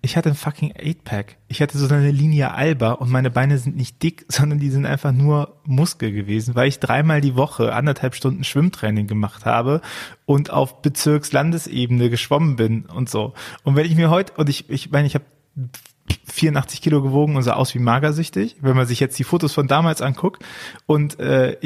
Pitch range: 120-150 Hz